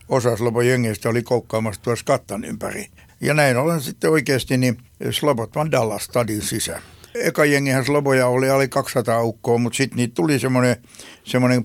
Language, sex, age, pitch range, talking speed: Finnish, male, 60-79, 115-135 Hz, 150 wpm